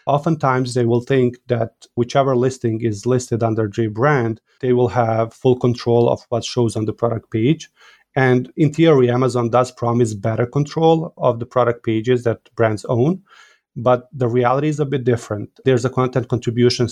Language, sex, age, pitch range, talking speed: English, male, 30-49, 115-130 Hz, 175 wpm